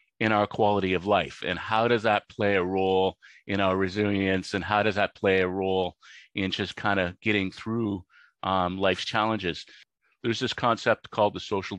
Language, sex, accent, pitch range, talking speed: English, male, American, 90-105 Hz, 190 wpm